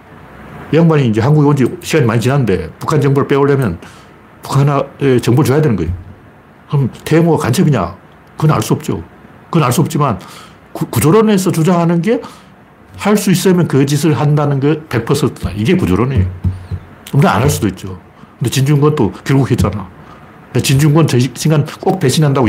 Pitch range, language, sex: 105-155 Hz, Korean, male